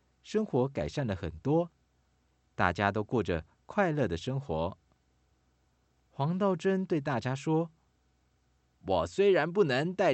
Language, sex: Chinese, male